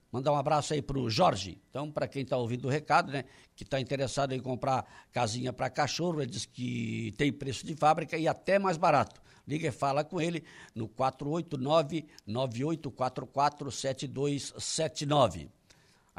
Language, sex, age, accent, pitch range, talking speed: Portuguese, male, 60-79, Brazilian, 120-150 Hz, 150 wpm